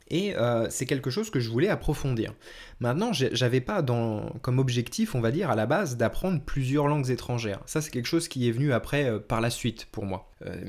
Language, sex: French, male